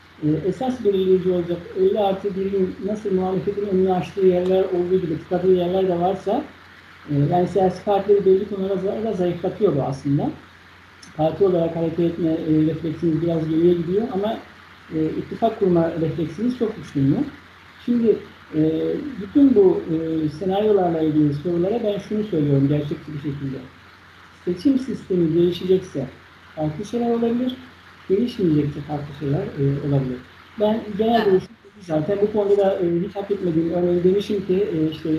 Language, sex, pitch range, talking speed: Turkish, male, 160-200 Hz, 145 wpm